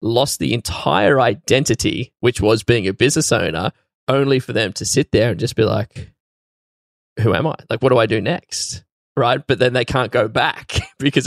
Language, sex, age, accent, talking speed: English, male, 10-29, Australian, 195 wpm